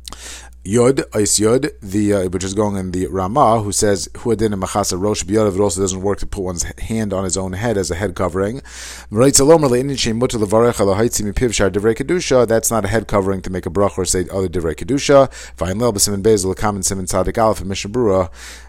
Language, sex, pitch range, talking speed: English, male, 95-115 Hz, 150 wpm